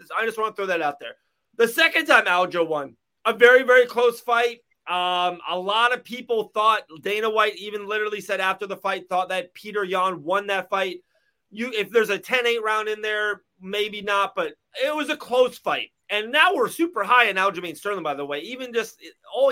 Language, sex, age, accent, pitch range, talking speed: English, male, 30-49, American, 190-245 Hz, 210 wpm